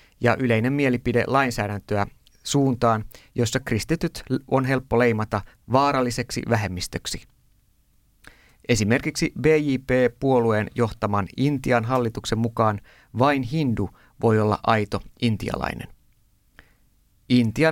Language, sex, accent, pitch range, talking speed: Finnish, male, native, 105-130 Hz, 85 wpm